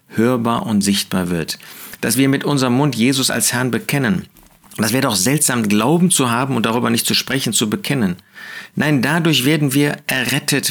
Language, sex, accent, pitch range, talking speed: German, male, German, 125-160 Hz, 180 wpm